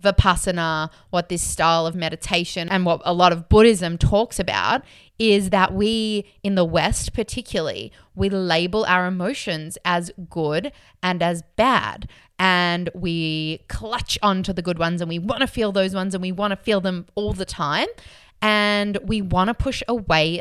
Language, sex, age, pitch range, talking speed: English, female, 20-39, 170-210 Hz, 175 wpm